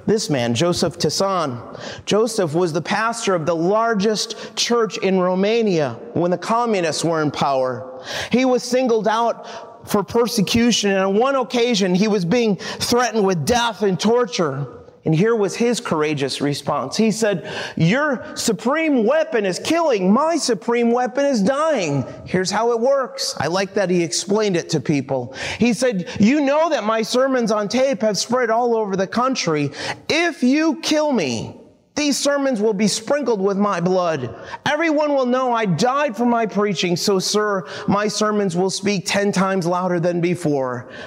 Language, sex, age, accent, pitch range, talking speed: English, male, 30-49, American, 165-235 Hz, 165 wpm